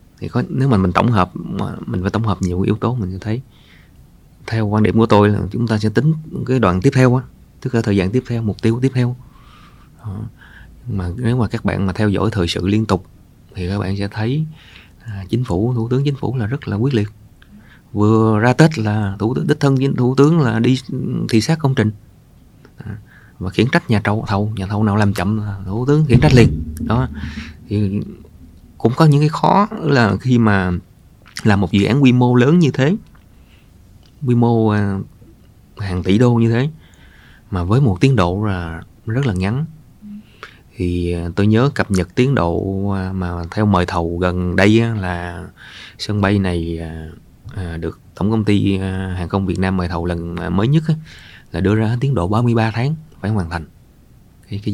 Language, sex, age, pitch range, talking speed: Vietnamese, male, 20-39, 95-120 Hz, 200 wpm